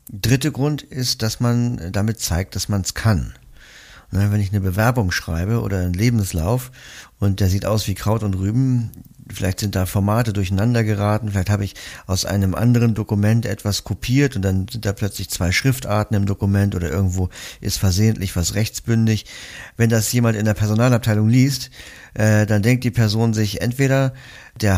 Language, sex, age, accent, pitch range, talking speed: German, male, 50-69, German, 95-115 Hz, 175 wpm